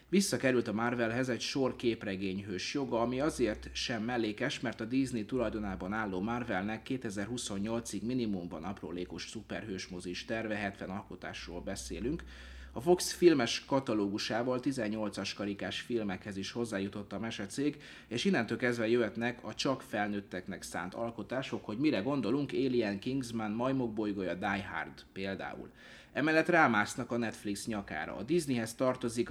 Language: Hungarian